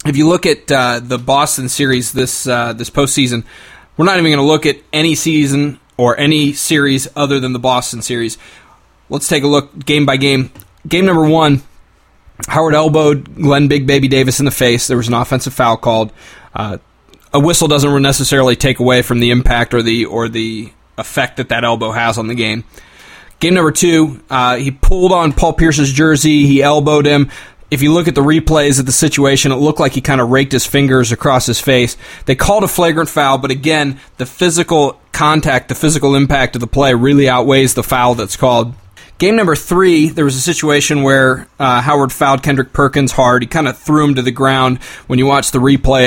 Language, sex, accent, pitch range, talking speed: English, male, American, 125-145 Hz, 205 wpm